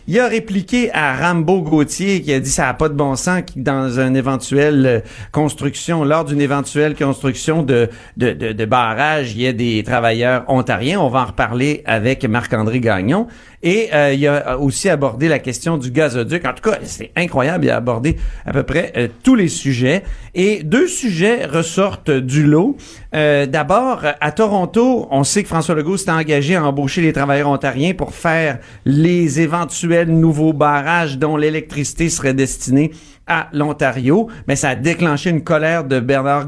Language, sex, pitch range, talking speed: French, male, 135-175 Hz, 180 wpm